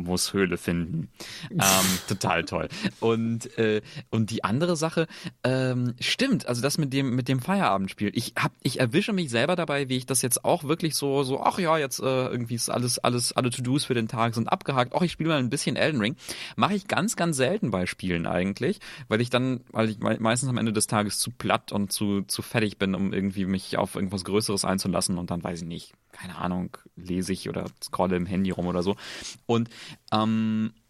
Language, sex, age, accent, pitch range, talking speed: German, male, 30-49, German, 110-150 Hz, 215 wpm